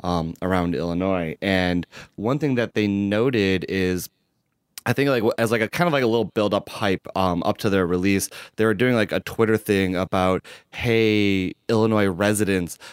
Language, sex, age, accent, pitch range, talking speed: English, male, 30-49, American, 95-110 Hz, 185 wpm